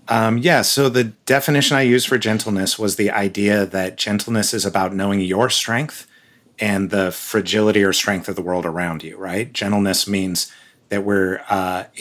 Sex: male